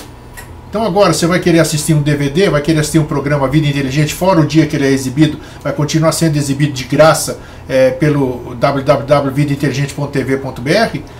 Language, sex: Portuguese, male